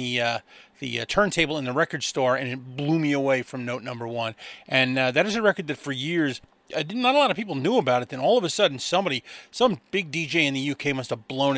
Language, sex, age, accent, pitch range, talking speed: English, male, 30-49, American, 135-180 Hz, 270 wpm